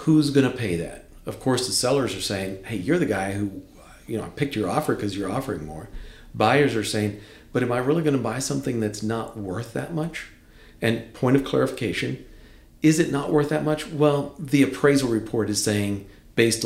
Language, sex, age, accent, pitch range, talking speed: English, male, 50-69, American, 100-135 Hz, 215 wpm